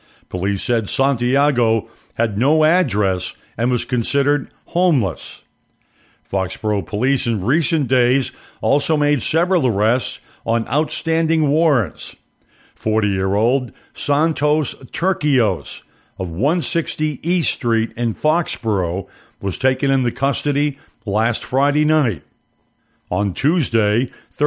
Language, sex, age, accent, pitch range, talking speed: English, male, 60-79, American, 115-150 Hz, 100 wpm